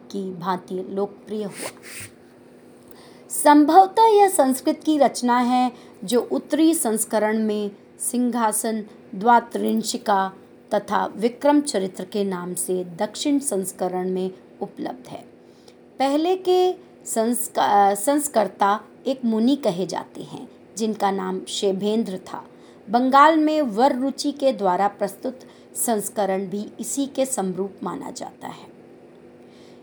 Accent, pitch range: native, 200-270 Hz